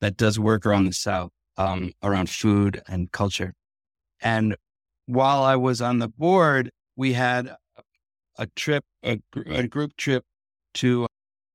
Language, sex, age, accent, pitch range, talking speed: English, male, 60-79, American, 115-145 Hz, 140 wpm